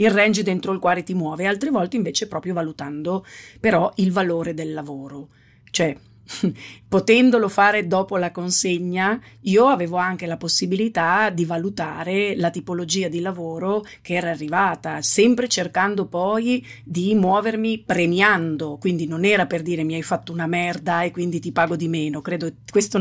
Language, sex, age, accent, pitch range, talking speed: Italian, female, 40-59, native, 165-205 Hz, 155 wpm